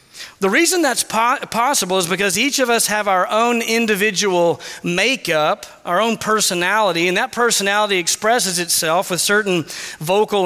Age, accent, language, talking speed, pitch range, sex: 40-59, American, English, 150 wpm, 170-215 Hz, male